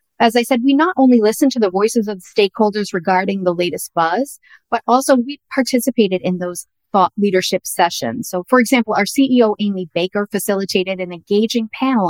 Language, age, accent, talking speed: English, 40-59, American, 185 wpm